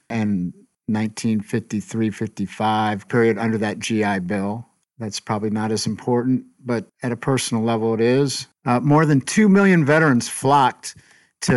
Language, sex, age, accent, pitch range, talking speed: English, male, 50-69, American, 115-135 Hz, 140 wpm